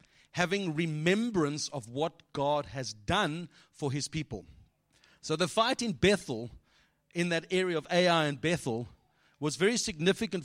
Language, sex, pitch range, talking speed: English, male, 135-180 Hz, 145 wpm